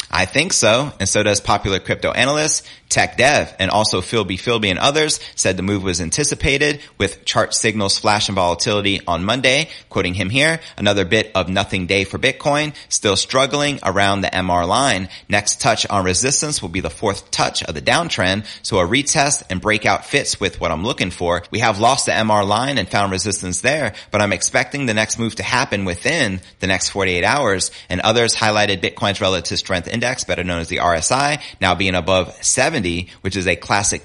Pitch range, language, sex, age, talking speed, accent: 90-115 Hz, English, male, 30-49, 195 wpm, American